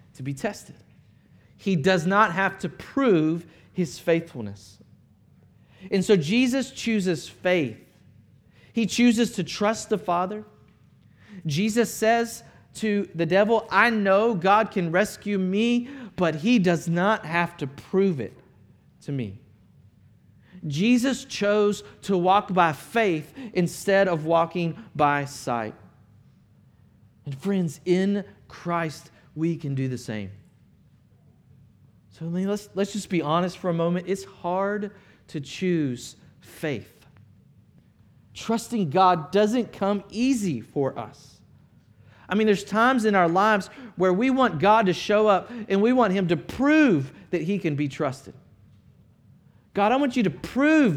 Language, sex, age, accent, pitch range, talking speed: English, male, 40-59, American, 140-205 Hz, 135 wpm